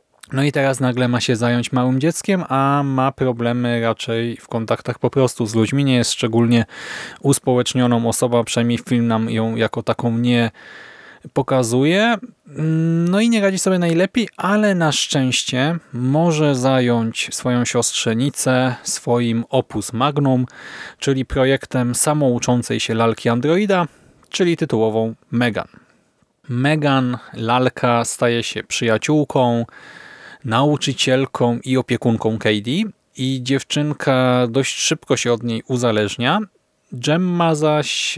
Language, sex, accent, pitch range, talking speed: Polish, male, native, 120-145 Hz, 120 wpm